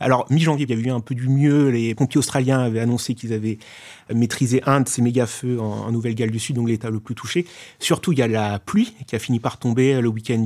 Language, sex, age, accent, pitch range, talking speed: French, male, 30-49, French, 120-145 Hz, 260 wpm